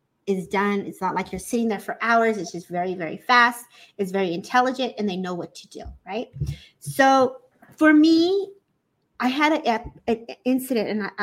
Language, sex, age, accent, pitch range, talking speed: English, female, 30-49, American, 195-255 Hz, 170 wpm